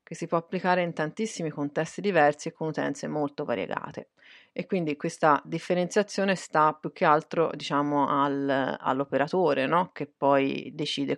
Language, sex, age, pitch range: Italian, female, 30-49, 140-170 Hz